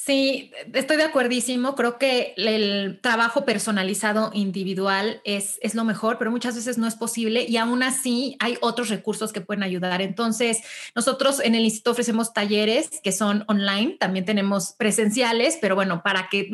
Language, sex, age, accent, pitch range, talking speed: Spanish, female, 30-49, Mexican, 190-230 Hz, 165 wpm